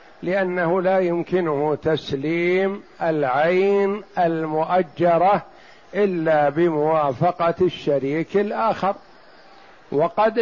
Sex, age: male, 60-79